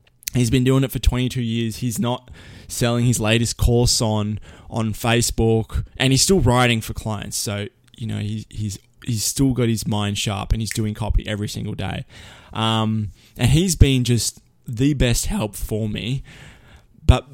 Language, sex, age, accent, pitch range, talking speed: English, male, 20-39, Australian, 110-130 Hz, 175 wpm